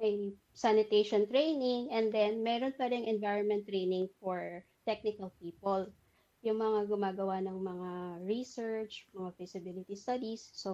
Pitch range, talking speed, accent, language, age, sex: 195-230 Hz, 125 wpm, native, Filipino, 20-39, female